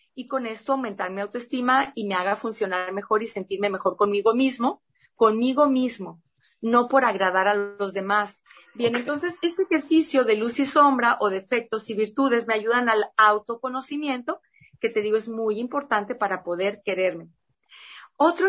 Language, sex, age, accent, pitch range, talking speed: Spanish, female, 40-59, Mexican, 195-265 Hz, 160 wpm